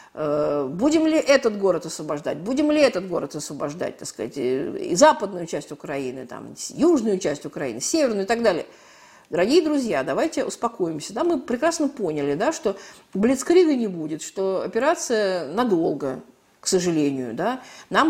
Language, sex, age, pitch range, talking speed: Russian, female, 50-69, 185-275 Hz, 145 wpm